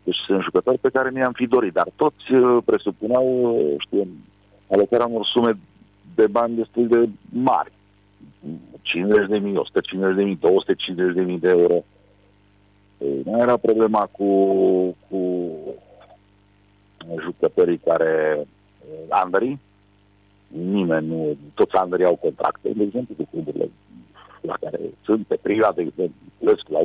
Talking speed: 120 wpm